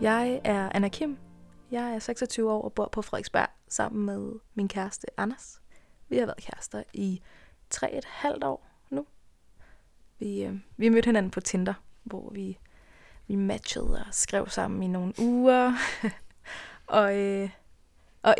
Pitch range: 195-225 Hz